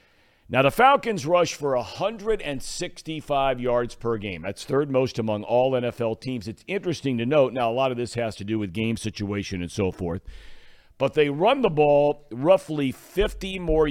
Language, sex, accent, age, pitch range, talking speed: English, male, American, 50-69, 110-145 Hz, 180 wpm